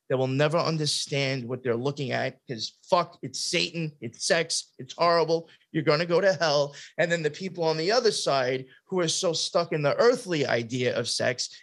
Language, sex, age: English, male, 20-39